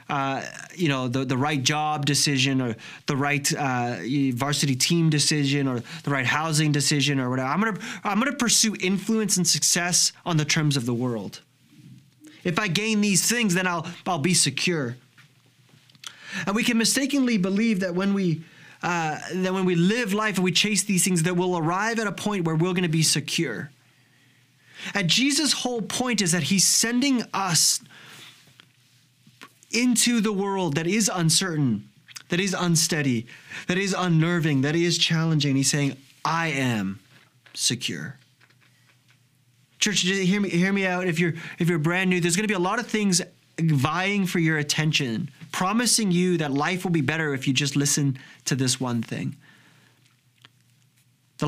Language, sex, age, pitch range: English, male, 20-39, 135-185 Hz